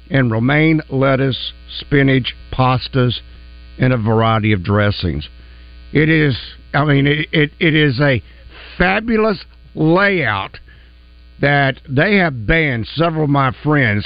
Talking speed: 125 wpm